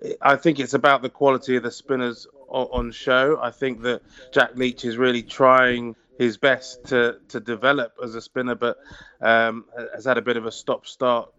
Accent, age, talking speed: British, 20-39, 190 wpm